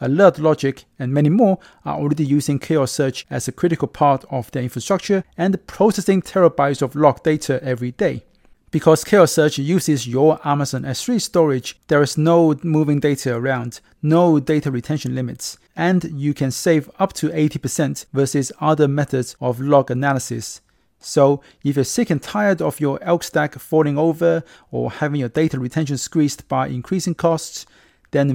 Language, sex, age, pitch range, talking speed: English, male, 30-49, 135-165 Hz, 165 wpm